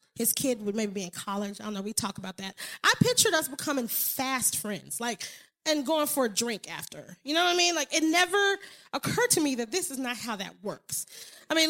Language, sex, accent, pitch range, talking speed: English, female, American, 230-340 Hz, 240 wpm